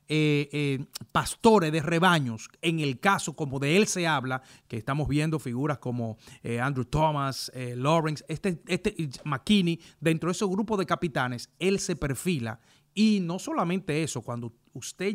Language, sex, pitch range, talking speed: English, male, 135-175 Hz, 160 wpm